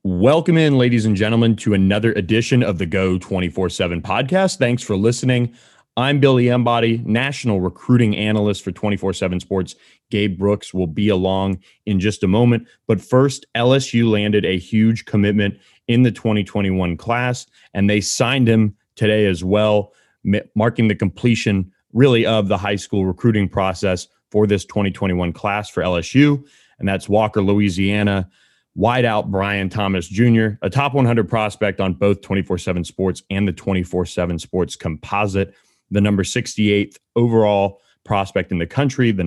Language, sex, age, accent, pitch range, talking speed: English, male, 30-49, American, 95-115 Hz, 150 wpm